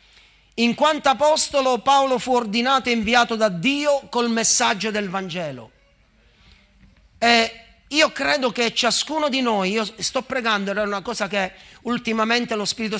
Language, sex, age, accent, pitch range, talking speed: Italian, male, 40-59, native, 145-230 Hz, 145 wpm